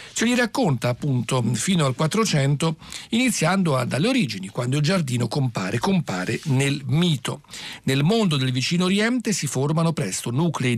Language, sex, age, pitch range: Italian, male, 50-69, 125-175 Hz